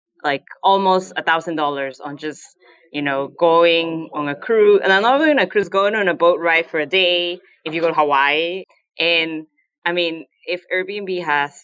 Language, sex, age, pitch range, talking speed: English, female, 20-39, 150-180 Hz, 195 wpm